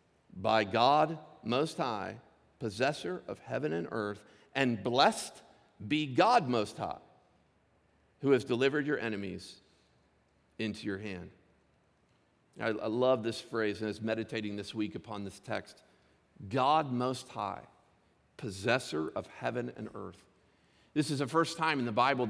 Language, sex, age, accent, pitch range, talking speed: English, male, 50-69, American, 105-130 Hz, 145 wpm